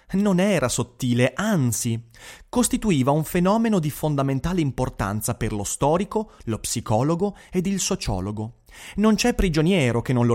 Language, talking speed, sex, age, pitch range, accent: Italian, 140 wpm, male, 30-49, 120-180 Hz, native